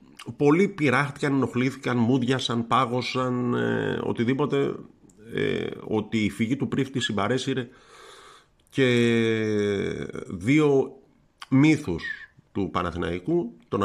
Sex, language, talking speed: male, Greek, 85 wpm